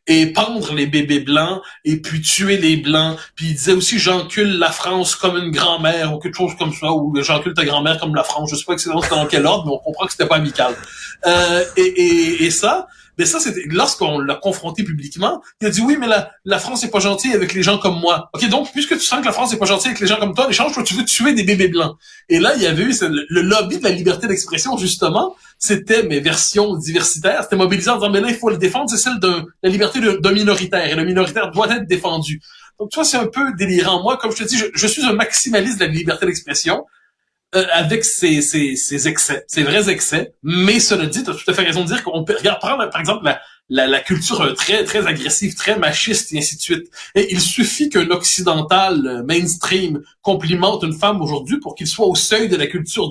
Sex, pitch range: male, 160-215 Hz